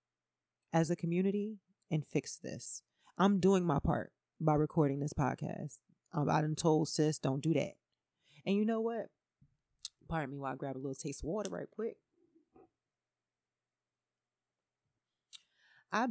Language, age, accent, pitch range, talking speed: English, 30-49, American, 140-195 Hz, 140 wpm